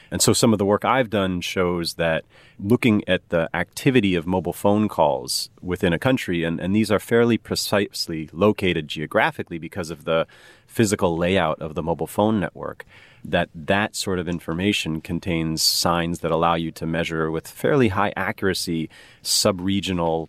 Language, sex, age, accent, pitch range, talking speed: English, male, 30-49, American, 85-100 Hz, 165 wpm